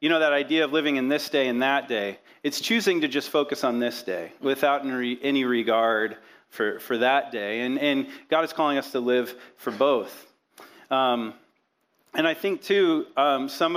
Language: English